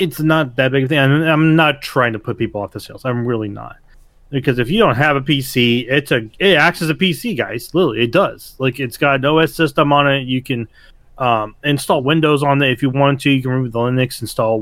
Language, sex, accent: English, male, American